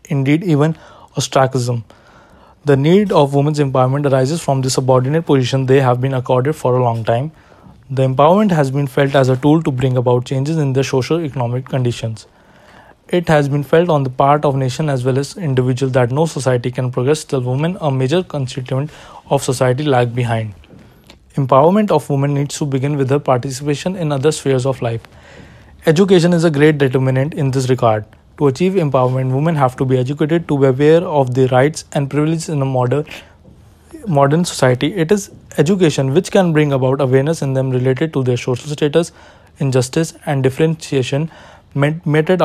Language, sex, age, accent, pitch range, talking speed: English, male, 20-39, Indian, 130-155 Hz, 180 wpm